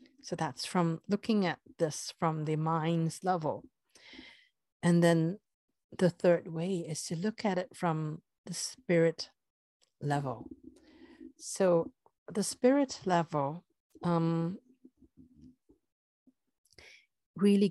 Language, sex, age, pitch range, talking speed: English, female, 50-69, 155-205 Hz, 100 wpm